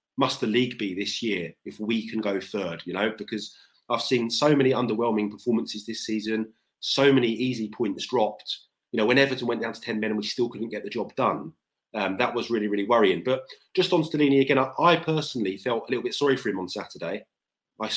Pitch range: 105-125 Hz